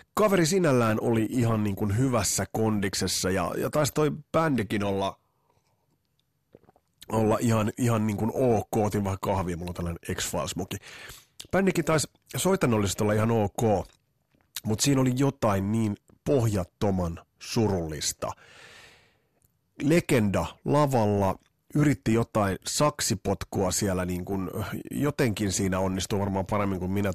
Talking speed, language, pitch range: 120 wpm, Finnish, 95-125 Hz